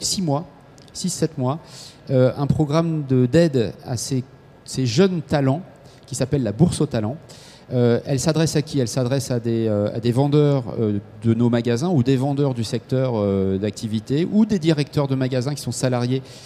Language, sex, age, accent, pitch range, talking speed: French, male, 40-59, French, 125-155 Hz, 195 wpm